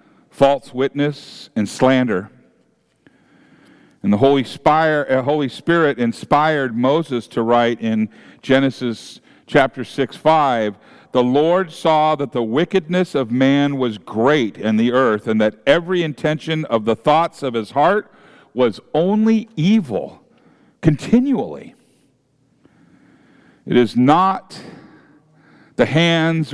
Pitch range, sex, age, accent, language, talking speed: 125-160 Hz, male, 50-69, American, English, 115 wpm